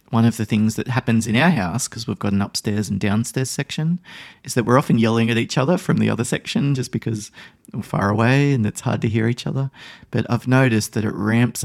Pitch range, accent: 110-130 Hz, Australian